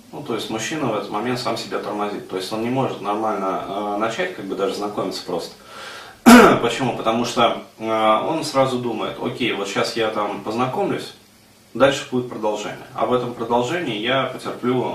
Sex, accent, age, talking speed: male, native, 30-49, 180 wpm